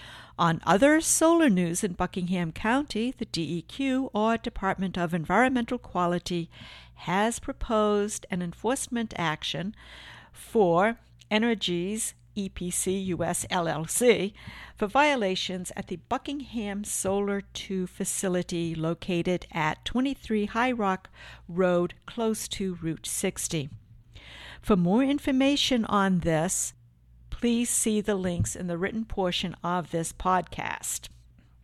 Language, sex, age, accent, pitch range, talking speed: English, female, 50-69, American, 170-225 Hz, 110 wpm